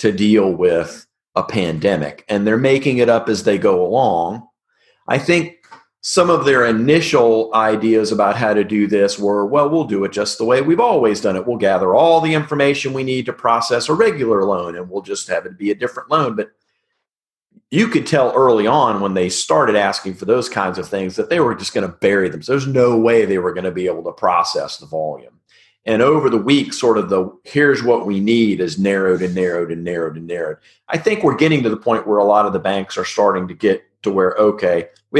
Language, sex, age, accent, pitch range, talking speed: English, male, 40-59, American, 100-140 Hz, 230 wpm